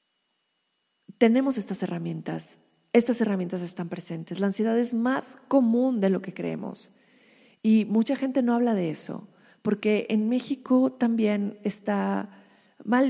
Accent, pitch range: Mexican, 175-220 Hz